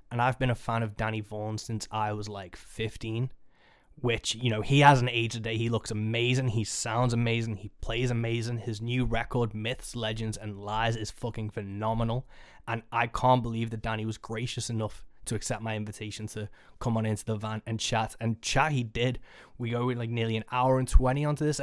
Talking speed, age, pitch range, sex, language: 210 wpm, 20-39, 110-120 Hz, male, English